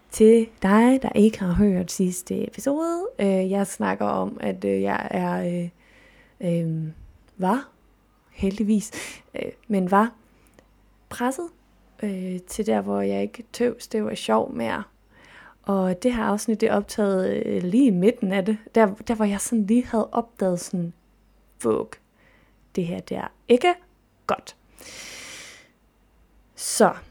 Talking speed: 135 wpm